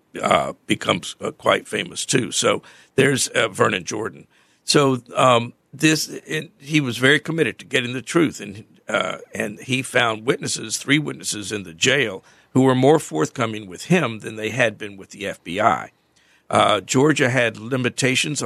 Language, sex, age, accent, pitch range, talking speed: English, male, 50-69, American, 110-130 Hz, 165 wpm